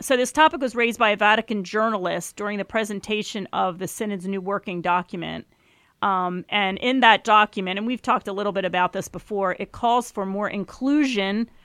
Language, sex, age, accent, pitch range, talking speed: English, female, 40-59, American, 190-225 Hz, 190 wpm